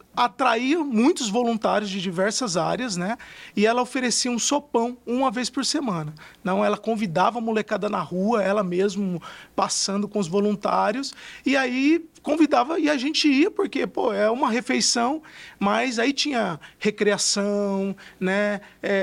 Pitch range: 200-260 Hz